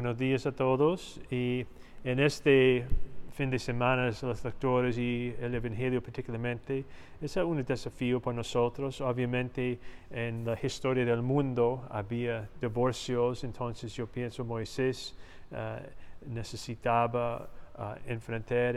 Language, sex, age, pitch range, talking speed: Spanish, male, 40-59, 115-130 Hz, 110 wpm